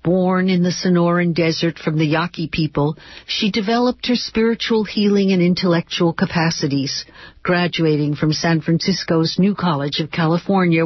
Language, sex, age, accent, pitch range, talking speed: English, female, 60-79, American, 155-195 Hz, 140 wpm